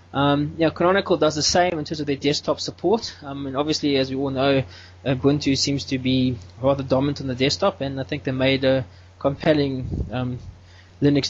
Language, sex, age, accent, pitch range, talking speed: English, male, 20-39, Australian, 125-145 Hz, 195 wpm